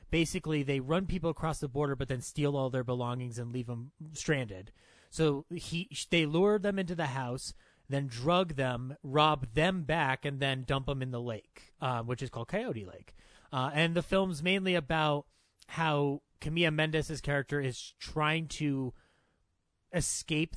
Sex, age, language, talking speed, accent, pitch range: male, 30-49, English, 165 wpm, American, 130-165 Hz